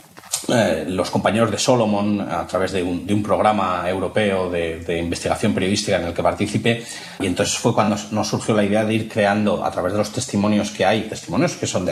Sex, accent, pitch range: male, Spanish, 95-115 Hz